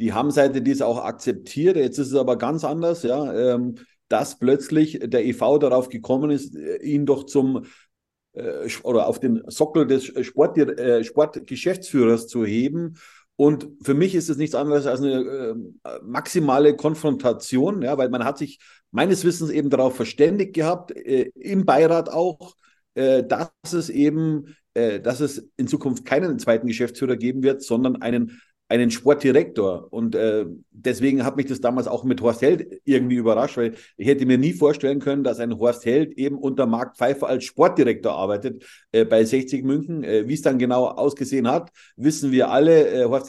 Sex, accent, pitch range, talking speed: male, German, 125-155 Hz, 165 wpm